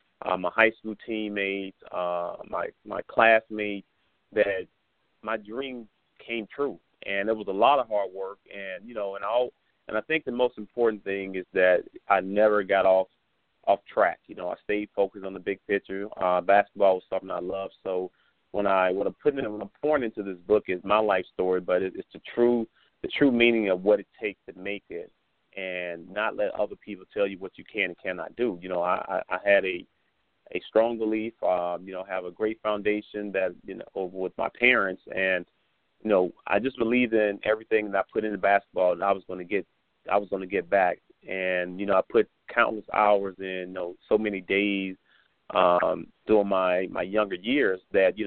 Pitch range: 95-110 Hz